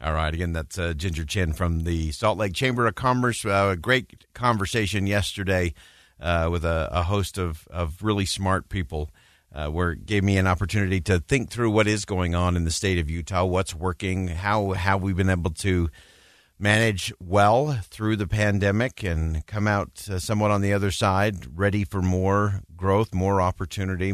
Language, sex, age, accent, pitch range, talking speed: English, male, 50-69, American, 85-100 Hz, 190 wpm